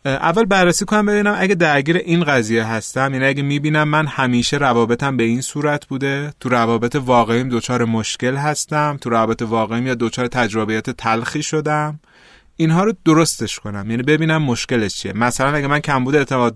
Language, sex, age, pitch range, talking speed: Persian, male, 30-49, 115-155 Hz, 165 wpm